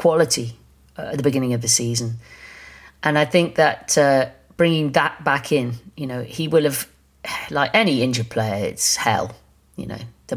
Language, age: English, 40-59